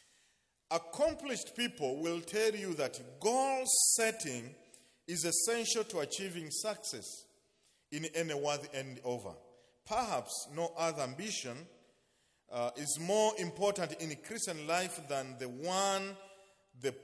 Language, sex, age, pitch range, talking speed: English, male, 40-59, 140-210 Hz, 115 wpm